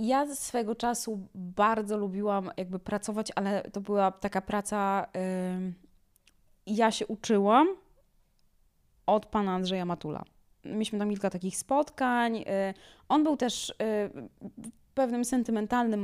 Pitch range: 175-220 Hz